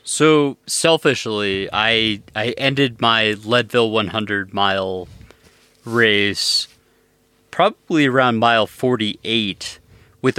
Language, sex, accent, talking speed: English, male, American, 85 wpm